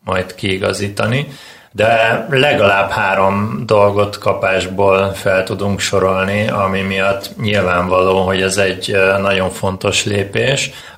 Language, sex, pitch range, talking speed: Hungarian, male, 95-105 Hz, 105 wpm